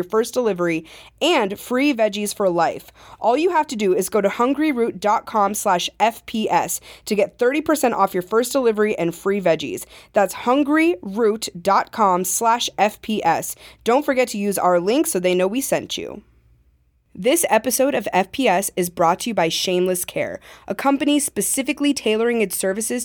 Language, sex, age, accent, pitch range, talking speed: English, female, 20-39, American, 190-250 Hz, 155 wpm